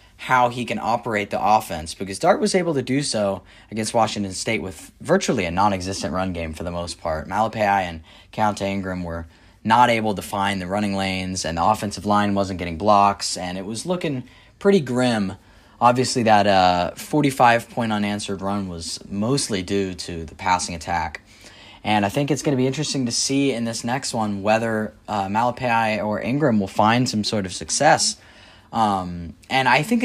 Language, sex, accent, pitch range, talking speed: English, male, American, 95-115 Hz, 185 wpm